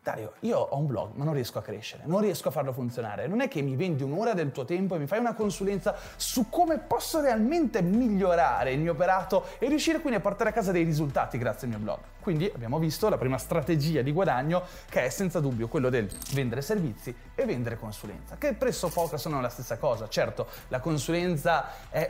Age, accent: 30-49, native